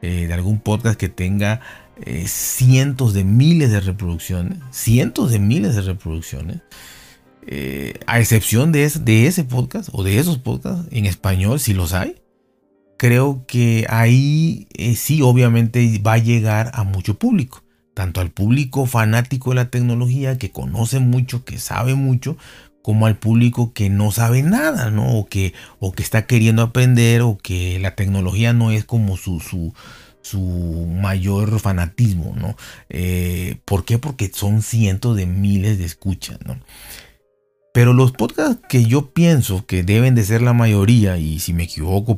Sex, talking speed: male, 160 wpm